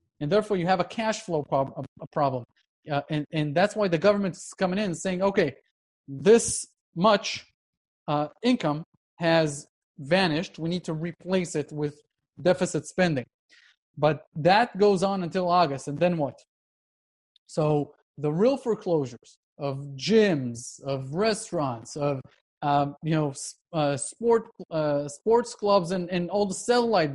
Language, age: English, 30-49